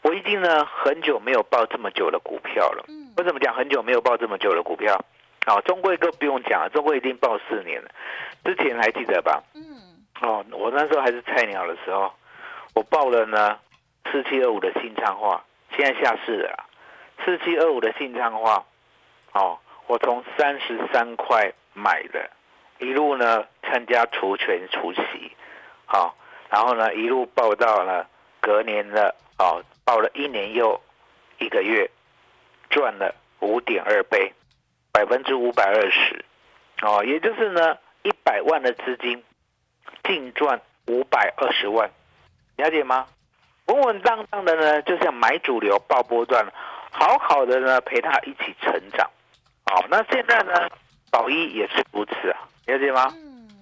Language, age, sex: Chinese, 50-69, male